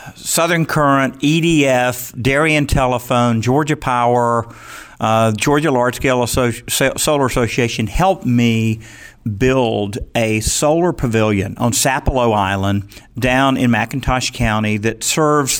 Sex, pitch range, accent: male, 115-140 Hz, American